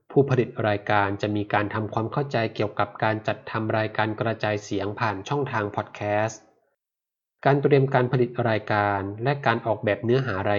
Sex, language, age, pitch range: male, Thai, 20-39, 105-125 Hz